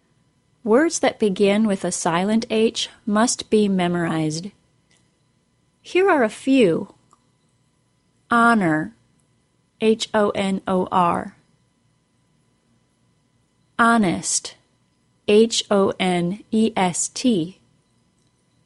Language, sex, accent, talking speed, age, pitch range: English, female, American, 60 wpm, 30-49, 180-235 Hz